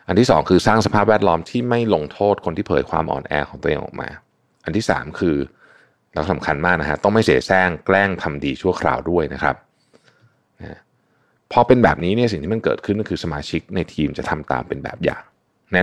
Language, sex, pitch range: Thai, male, 75-110 Hz